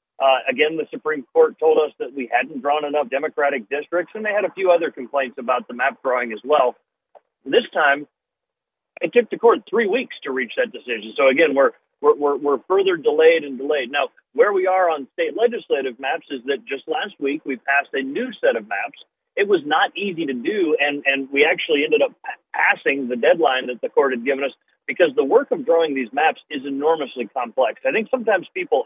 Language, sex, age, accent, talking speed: English, male, 40-59, American, 215 wpm